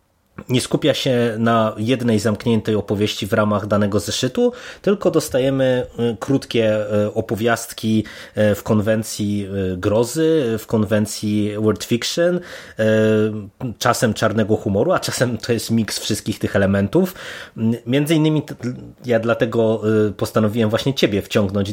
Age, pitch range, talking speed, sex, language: 20-39, 105-120 Hz, 115 wpm, male, Polish